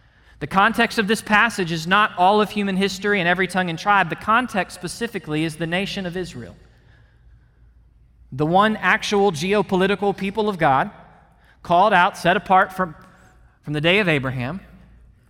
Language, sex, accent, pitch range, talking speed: English, male, American, 180-235 Hz, 160 wpm